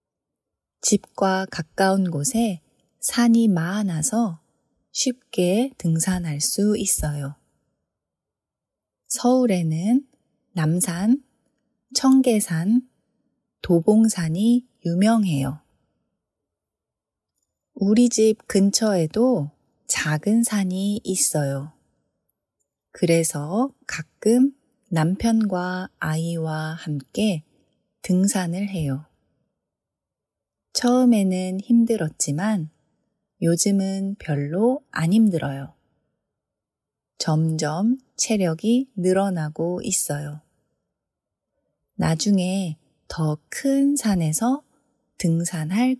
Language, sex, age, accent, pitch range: Korean, female, 30-49, native, 160-230 Hz